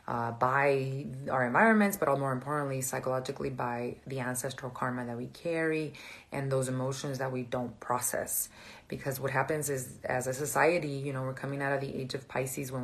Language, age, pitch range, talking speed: English, 30-49, 130-140 Hz, 190 wpm